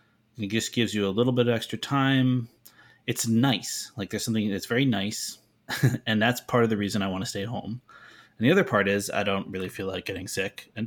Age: 30-49